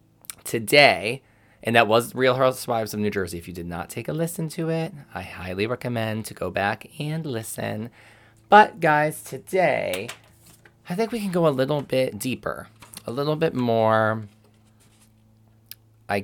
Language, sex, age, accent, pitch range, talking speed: English, male, 20-39, American, 95-115 Hz, 160 wpm